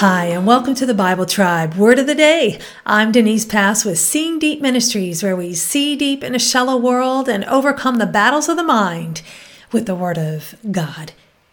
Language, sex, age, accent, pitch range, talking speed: English, female, 50-69, American, 190-260 Hz, 200 wpm